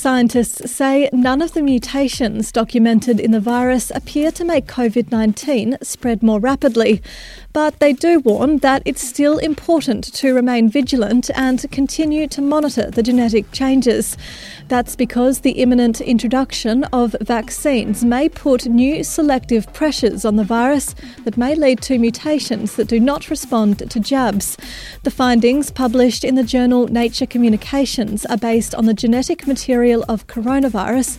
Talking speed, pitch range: 150 wpm, 230-275 Hz